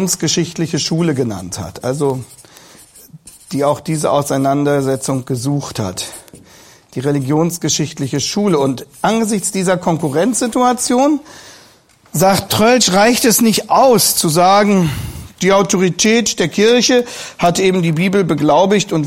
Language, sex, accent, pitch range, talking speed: German, male, German, 155-210 Hz, 110 wpm